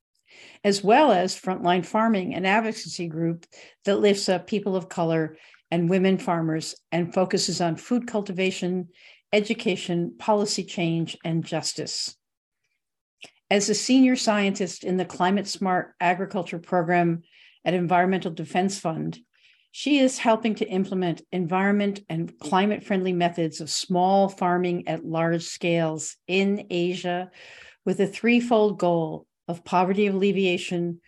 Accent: American